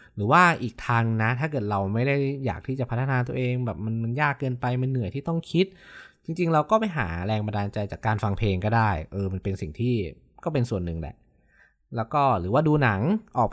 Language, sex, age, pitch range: Thai, male, 20-39, 100-130 Hz